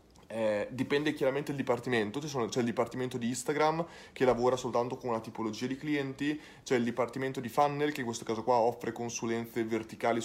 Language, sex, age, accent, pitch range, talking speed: Italian, male, 20-39, native, 115-145 Hz, 180 wpm